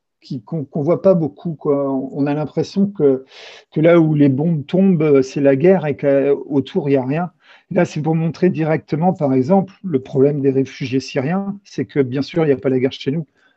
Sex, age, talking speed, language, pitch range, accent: male, 50-69, 220 wpm, French, 130-170 Hz, French